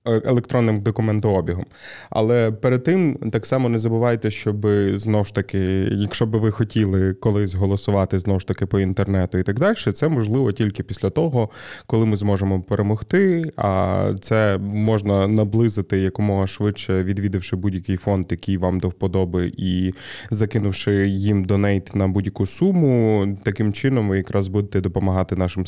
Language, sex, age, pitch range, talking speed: Ukrainian, male, 20-39, 95-110 Hz, 145 wpm